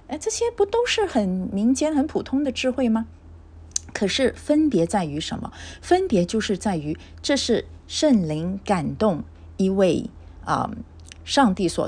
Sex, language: female, Chinese